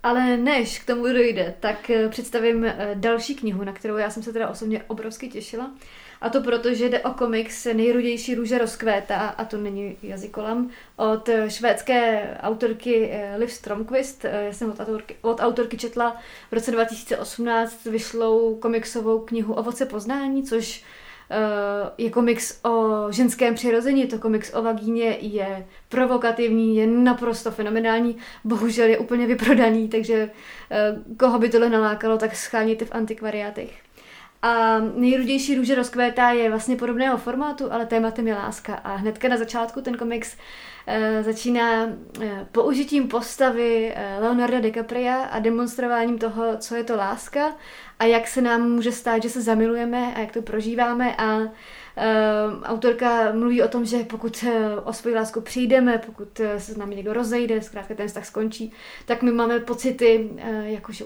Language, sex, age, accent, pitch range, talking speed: Czech, female, 30-49, native, 220-240 Hz, 150 wpm